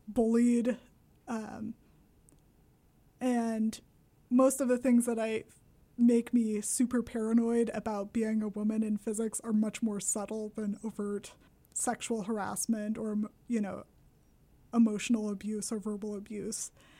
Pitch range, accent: 220-245 Hz, American